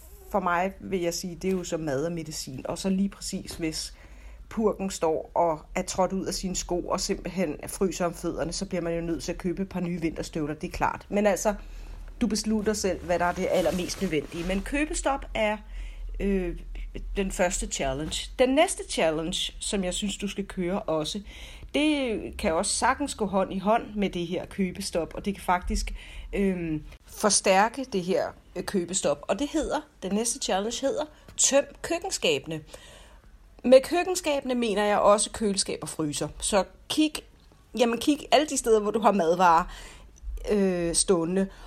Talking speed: 180 wpm